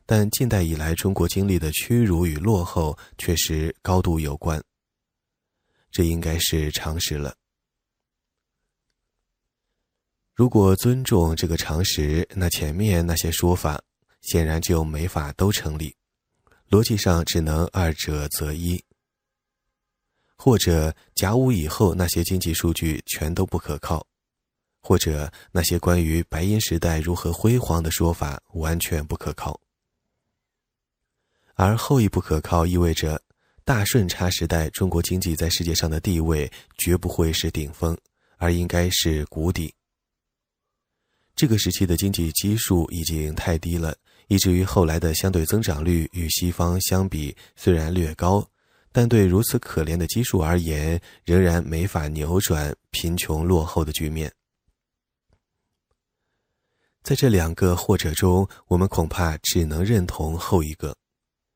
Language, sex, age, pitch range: English, male, 20-39, 80-95 Hz